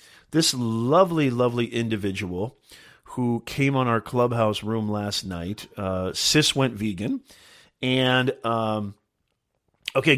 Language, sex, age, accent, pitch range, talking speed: English, male, 40-59, American, 100-125 Hz, 110 wpm